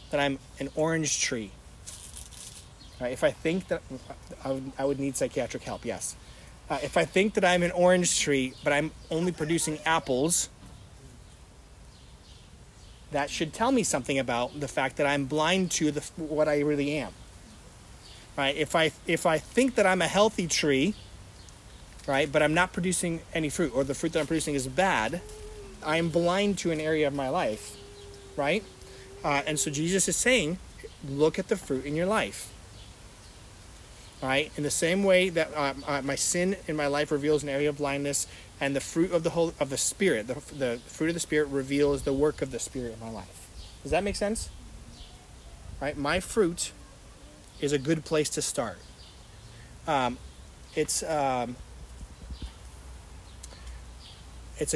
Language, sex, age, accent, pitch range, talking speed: English, male, 30-49, American, 100-160 Hz, 175 wpm